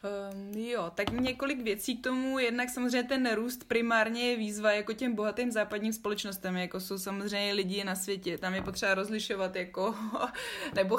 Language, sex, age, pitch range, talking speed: Slovak, female, 20-39, 180-220 Hz, 170 wpm